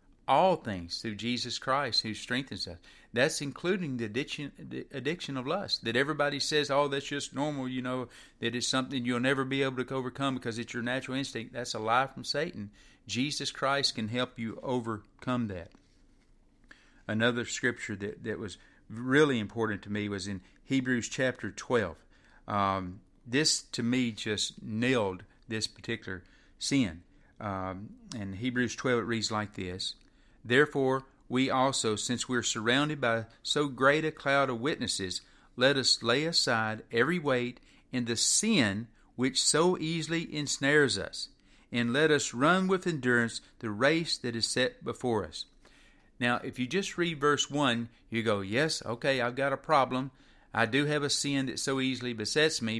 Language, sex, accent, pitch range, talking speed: English, male, American, 110-140 Hz, 165 wpm